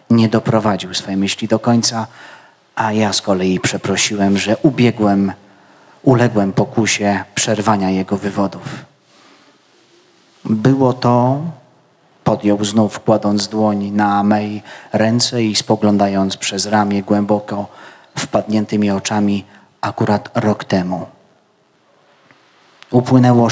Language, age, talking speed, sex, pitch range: Polish, 30-49, 95 wpm, male, 95-110 Hz